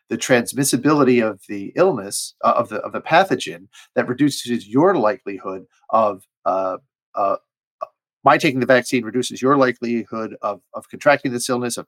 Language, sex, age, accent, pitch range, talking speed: English, male, 40-59, American, 115-140 Hz, 155 wpm